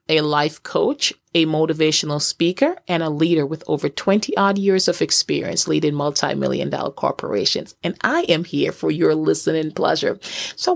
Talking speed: 160 wpm